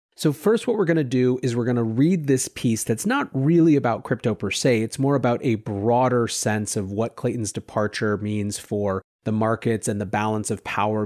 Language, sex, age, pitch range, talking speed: English, male, 30-49, 110-160 Hz, 215 wpm